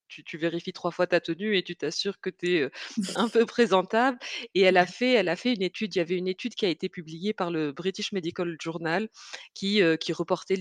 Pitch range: 165-200 Hz